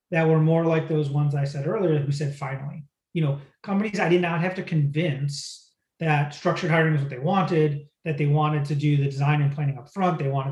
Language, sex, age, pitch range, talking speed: English, male, 30-49, 140-165 Hz, 235 wpm